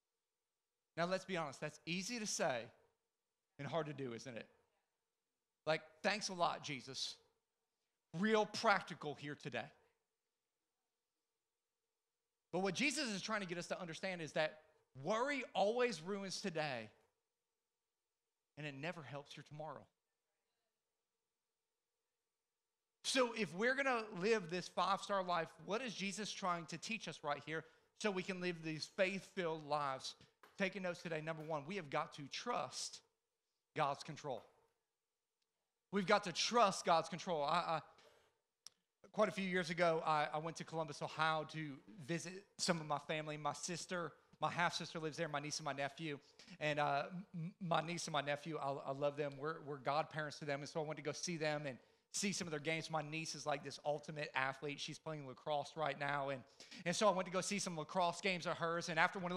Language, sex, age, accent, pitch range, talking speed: English, male, 40-59, American, 155-215 Hz, 180 wpm